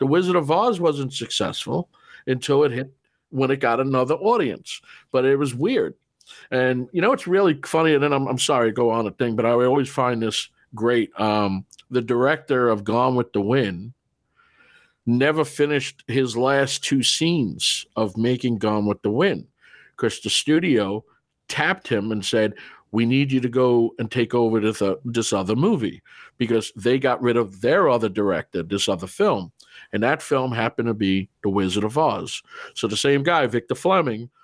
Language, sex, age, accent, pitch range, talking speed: English, male, 50-69, American, 115-140 Hz, 185 wpm